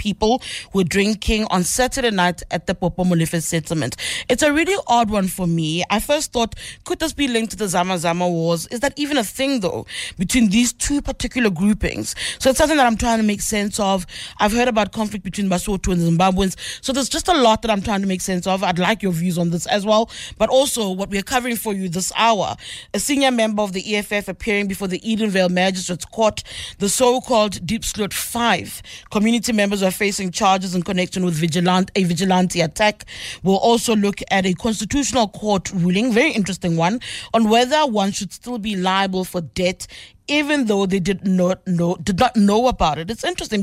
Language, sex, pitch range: English, female, 185-235 Hz